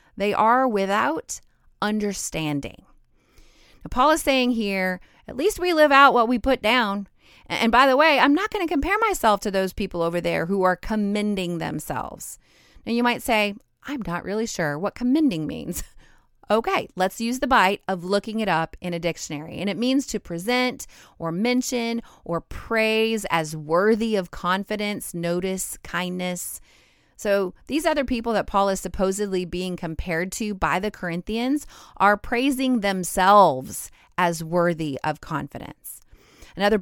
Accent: American